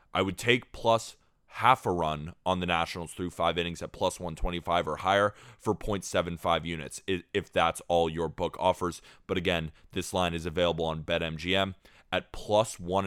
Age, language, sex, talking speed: 20-39, English, male, 175 wpm